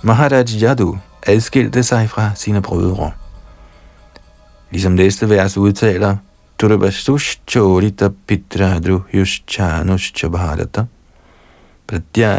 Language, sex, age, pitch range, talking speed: Danish, male, 50-69, 85-115 Hz, 65 wpm